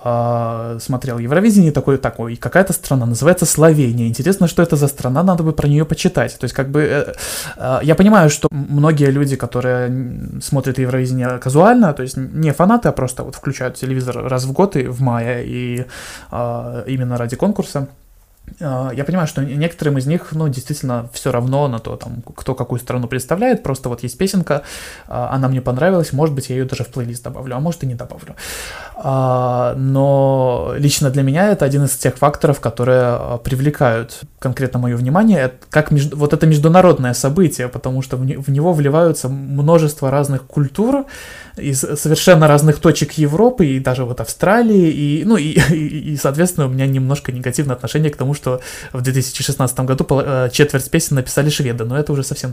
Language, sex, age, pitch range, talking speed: Russian, male, 20-39, 130-155 Hz, 175 wpm